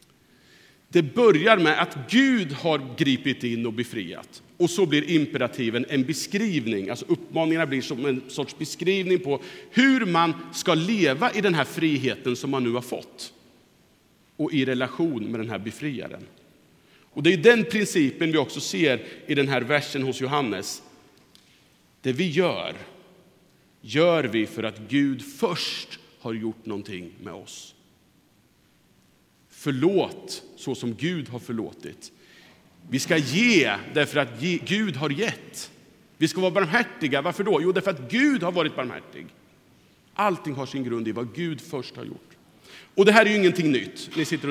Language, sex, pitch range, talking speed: Swedish, male, 130-180 Hz, 160 wpm